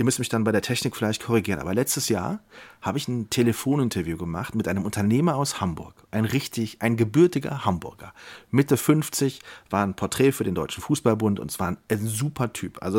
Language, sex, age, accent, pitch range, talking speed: German, male, 40-59, German, 100-125 Hz, 195 wpm